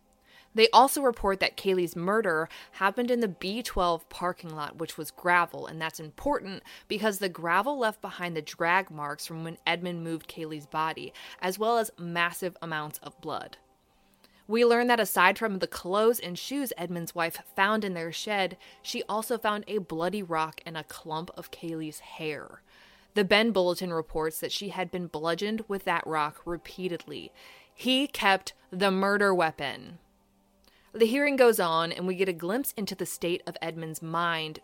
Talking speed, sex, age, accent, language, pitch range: 170 wpm, female, 20-39, American, English, 160-210 Hz